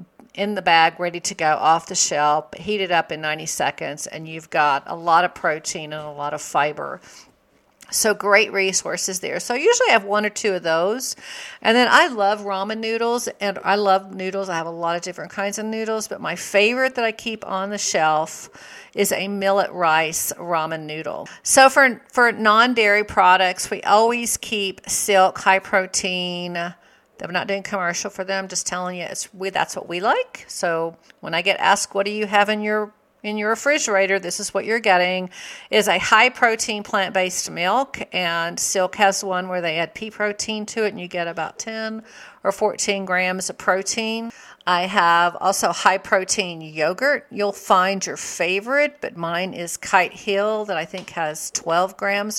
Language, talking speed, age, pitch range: English, 190 wpm, 50-69, 180-220 Hz